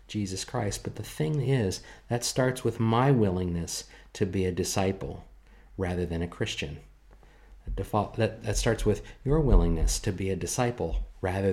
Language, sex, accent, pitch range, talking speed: English, male, American, 85-100 Hz, 150 wpm